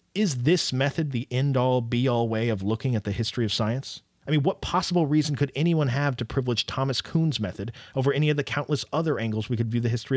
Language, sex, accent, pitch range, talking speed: English, male, American, 105-140 Hz, 230 wpm